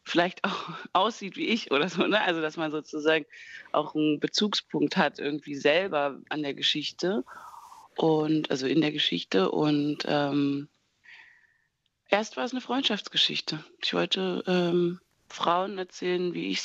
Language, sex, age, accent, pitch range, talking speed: German, female, 30-49, German, 140-175 Hz, 145 wpm